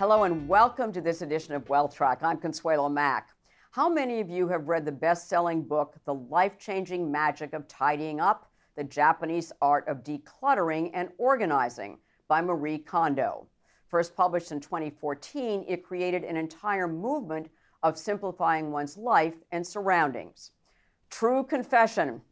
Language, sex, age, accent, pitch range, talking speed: English, female, 50-69, American, 150-185 Hz, 145 wpm